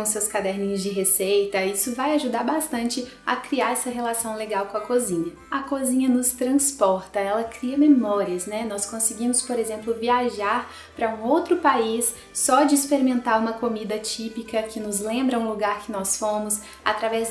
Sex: female